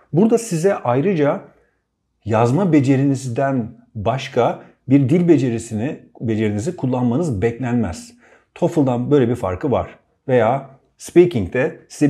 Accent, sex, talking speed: native, male, 100 wpm